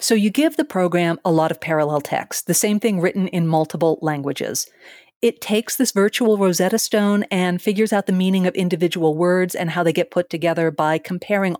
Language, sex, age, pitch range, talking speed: English, female, 40-59, 160-210 Hz, 200 wpm